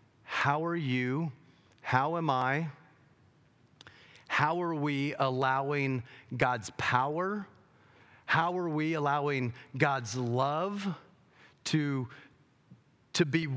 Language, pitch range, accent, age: English, 125-165 Hz, American, 40-59